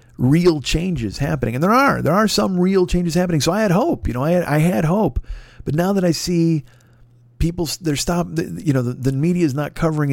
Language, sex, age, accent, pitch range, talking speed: English, male, 50-69, American, 120-150 Hz, 230 wpm